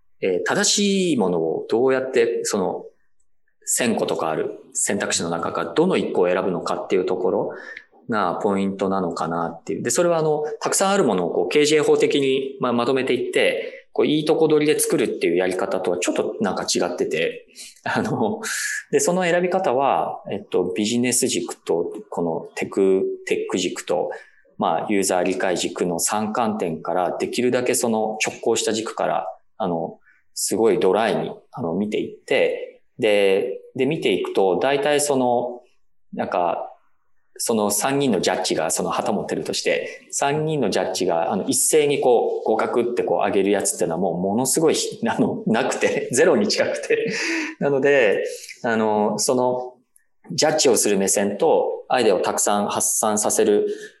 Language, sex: English, male